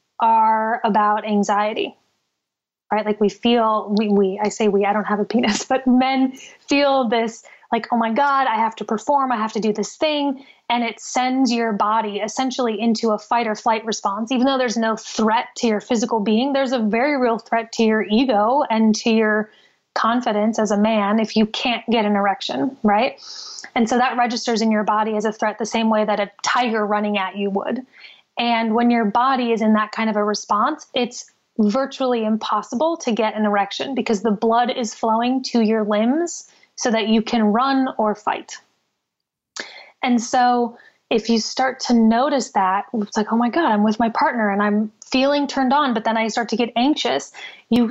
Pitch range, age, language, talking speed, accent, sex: 215-250 Hz, 20-39, English, 200 wpm, American, female